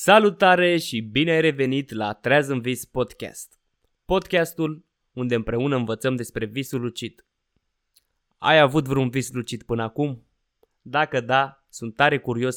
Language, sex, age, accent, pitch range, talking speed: Romanian, male, 20-39, native, 120-145 Hz, 140 wpm